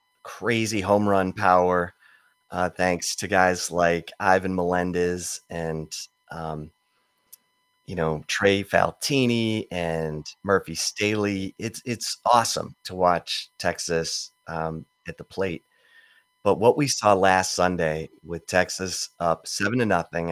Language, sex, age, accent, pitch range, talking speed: English, male, 30-49, American, 85-110 Hz, 125 wpm